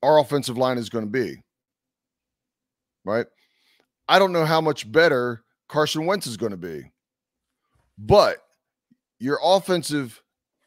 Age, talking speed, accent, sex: 30-49, 130 wpm, American, male